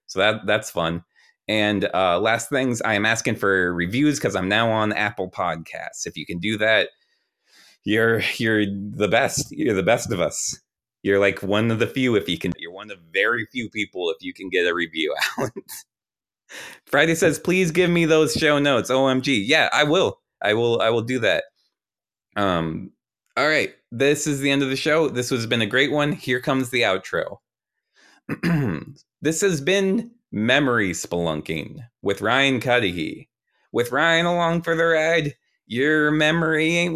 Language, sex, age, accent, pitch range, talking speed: English, male, 30-49, American, 105-170 Hz, 180 wpm